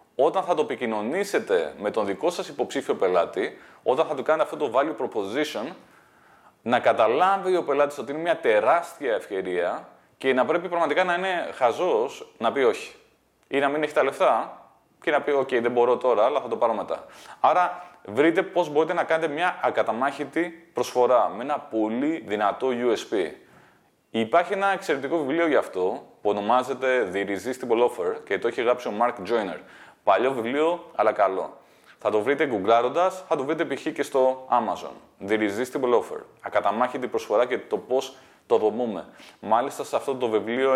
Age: 20-39